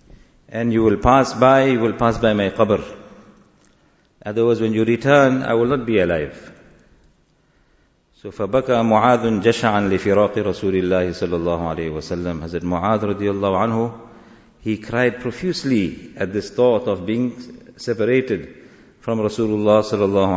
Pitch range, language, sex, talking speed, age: 110-145 Hz, English, male, 135 wpm, 50-69